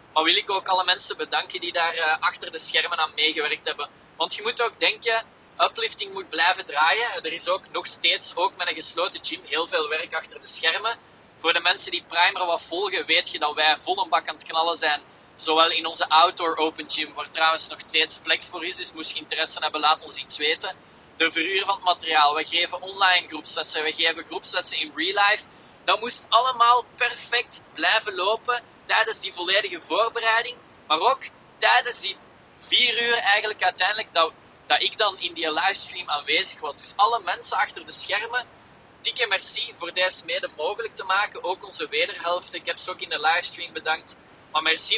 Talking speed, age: 200 wpm, 20-39